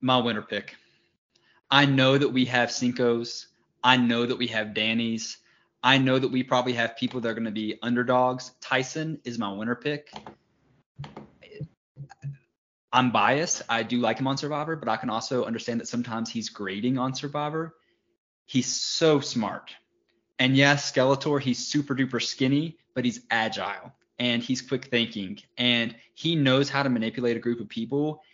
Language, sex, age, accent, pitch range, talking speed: English, male, 20-39, American, 120-140 Hz, 165 wpm